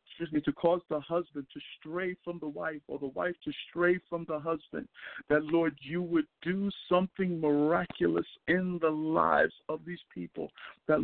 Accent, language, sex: American, English, male